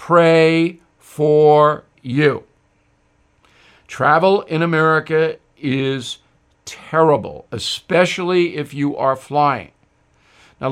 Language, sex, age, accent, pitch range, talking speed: English, male, 50-69, American, 150-195 Hz, 80 wpm